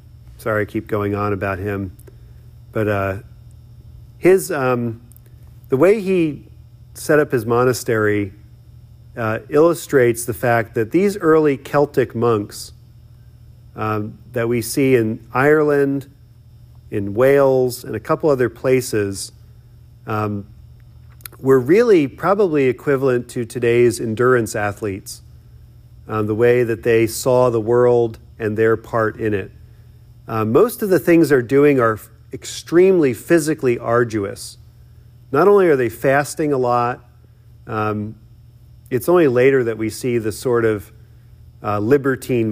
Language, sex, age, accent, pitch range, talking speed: English, male, 40-59, American, 110-125 Hz, 130 wpm